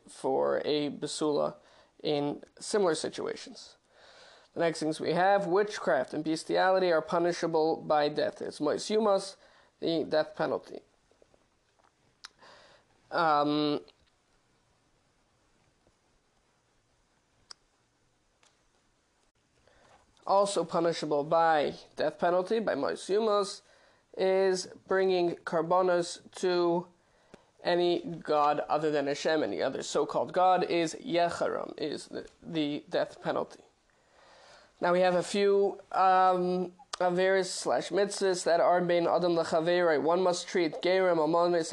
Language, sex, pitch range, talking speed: English, male, 160-185 Hz, 100 wpm